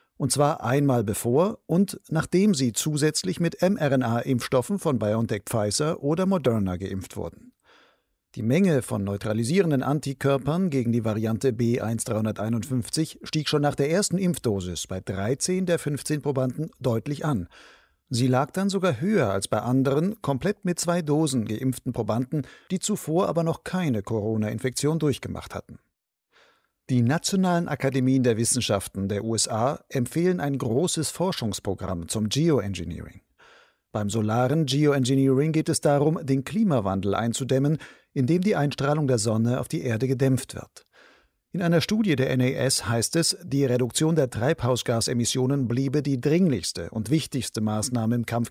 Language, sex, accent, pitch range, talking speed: German, male, German, 115-155 Hz, 135 wpm